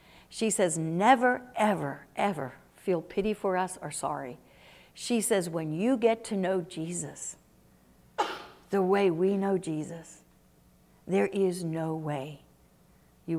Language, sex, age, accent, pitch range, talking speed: English, female, 60-79, American, 170-220 Hz, 130 wpm